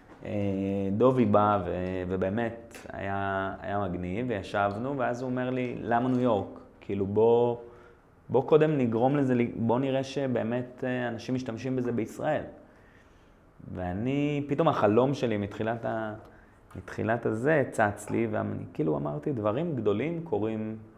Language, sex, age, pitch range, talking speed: Hebrew, male, 30-49, 95-125 Hz, 125 wpm